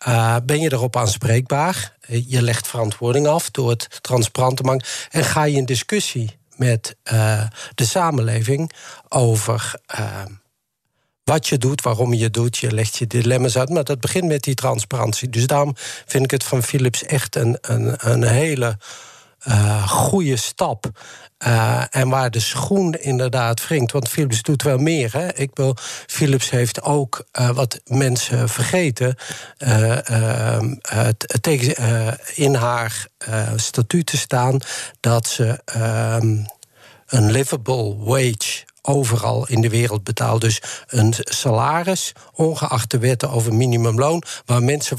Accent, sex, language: Dutch, male, Dutch